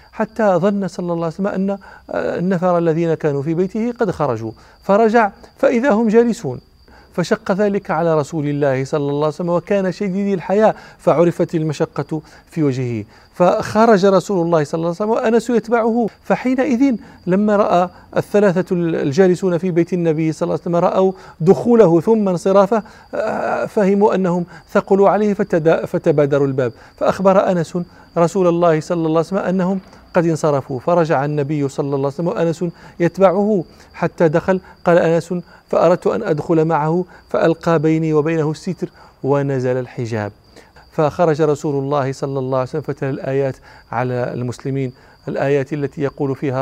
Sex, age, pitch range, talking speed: male, 40-59, 140-185 Hz, 145 wpm